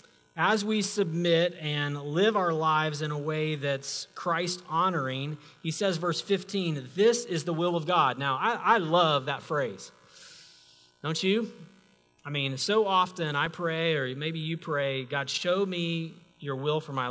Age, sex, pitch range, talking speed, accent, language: 40-59, male, 135-200 Hz, 165 wpm, American, English